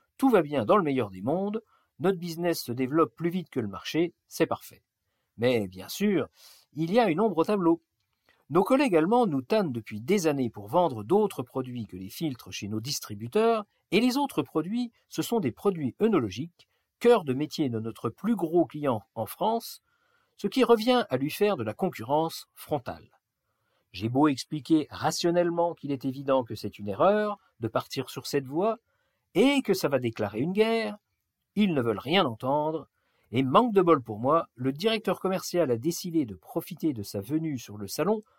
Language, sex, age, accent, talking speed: French, male, 50-69, French, 190 wpm